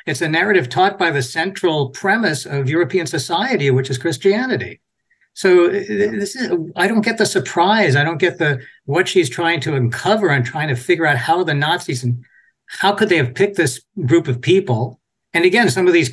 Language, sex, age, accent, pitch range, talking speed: English, male, 60-79, American, 130-180 Hz, 200 wpm